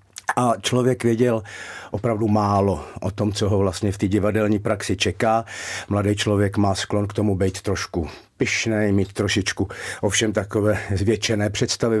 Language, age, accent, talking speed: Czech, 50-69, native, 150 wpm